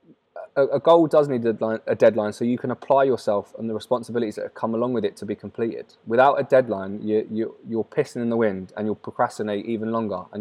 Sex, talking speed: male, 235 wpm